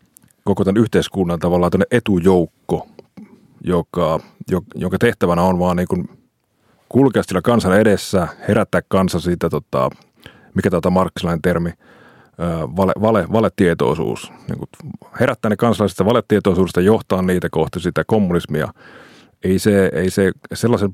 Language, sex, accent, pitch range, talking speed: Finnish, male, native, 85-105 Hz, 120 wpm